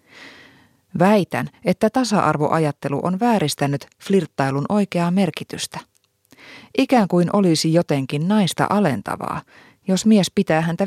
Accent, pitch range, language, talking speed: native, 130-175 Hz, Finnish, 100 wpm